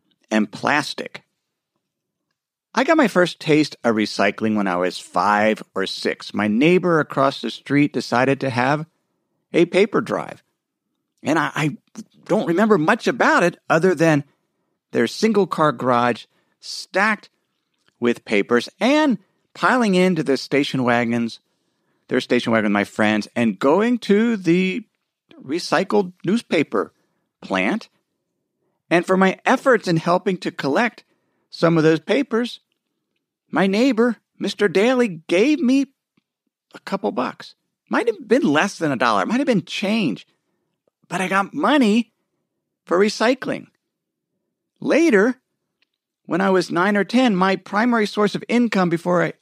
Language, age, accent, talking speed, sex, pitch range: English, 50-69, American, 140 wpm, male, 145-215 Hz